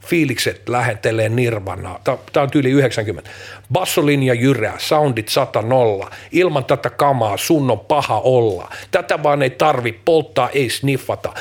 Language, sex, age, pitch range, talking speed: Finnish, male, 50-69, 115-160 Hz, 140 wpm